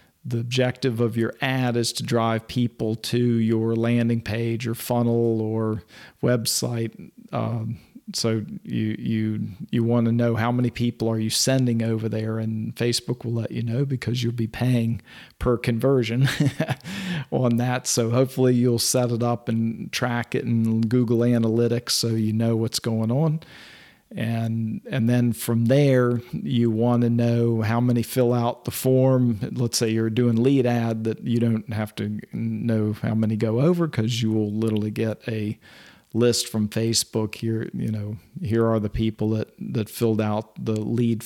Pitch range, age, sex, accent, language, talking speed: 110-125 Hz, 40-59, male, American, English, 170 wpm